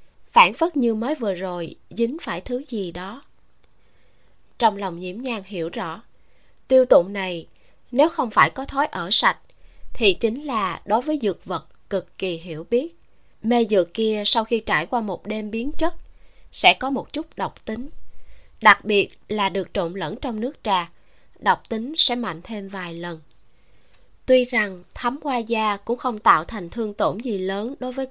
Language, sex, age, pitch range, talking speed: Vietnamese, female, 20-39, 180-245 Hz, 185 wpm